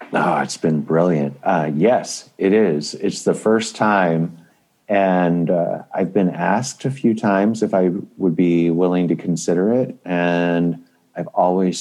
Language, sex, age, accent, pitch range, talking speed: English, male, 30-49, American, 80-95 Hz, 150 wpm